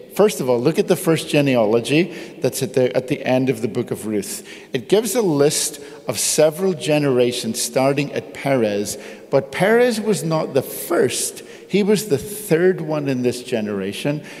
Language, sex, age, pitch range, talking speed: English, male, 50-69, 115-170 Hz, 175 wpm